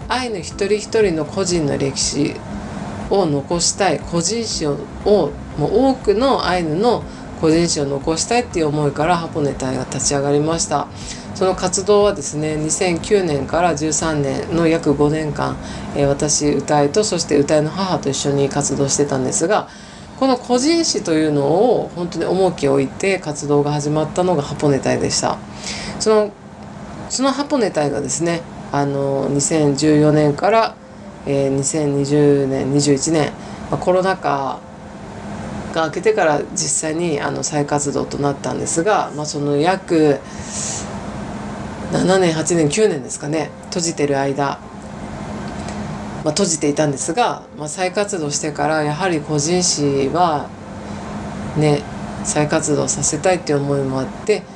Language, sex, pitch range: Japanese, female, 145-180 Hz